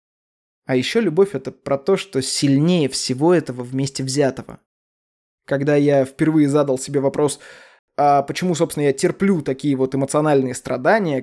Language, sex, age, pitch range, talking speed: Russian, male, 20-39, 135-170 Hz, 145 wpm